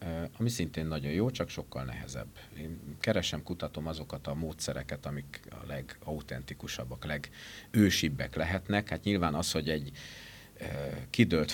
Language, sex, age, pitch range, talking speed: Hungarian, male, 50-69, 70-90 Hz, 125 wpm